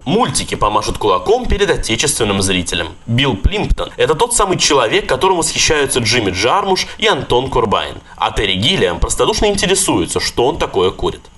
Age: 20-39